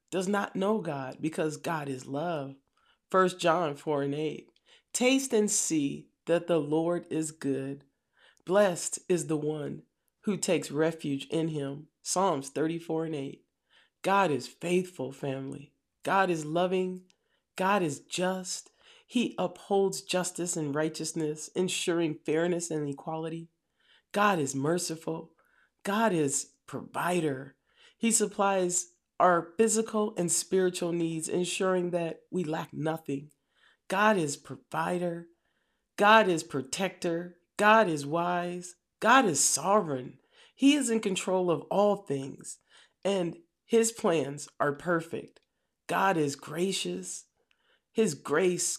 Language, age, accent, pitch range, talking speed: English, 40-59, American, 155-190 Hz, 125 wpm